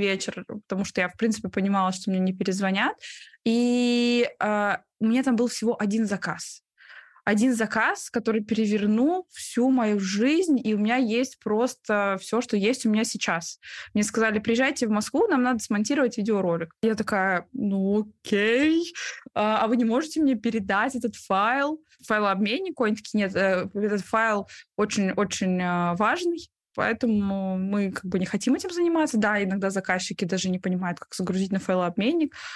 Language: Russian